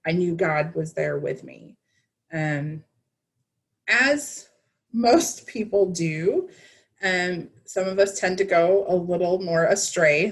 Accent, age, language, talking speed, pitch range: American, 20-39, English, 140 wpm, 155-180 Hz